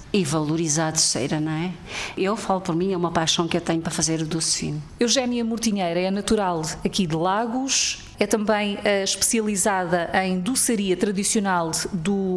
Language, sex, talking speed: Portuguese, female, 165 wpm